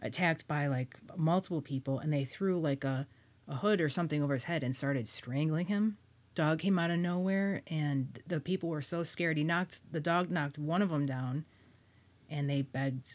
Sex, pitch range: female, 140-180 Hz